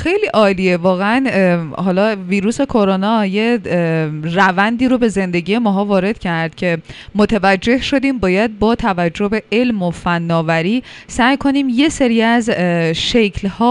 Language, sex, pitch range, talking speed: Persian, female, 185-250 Hz, 130 wpm